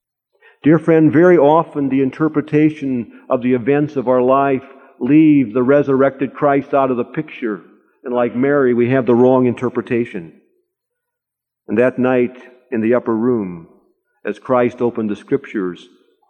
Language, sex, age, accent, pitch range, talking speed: English, male, 50-69, American, 120-190 Hz, 145 wpm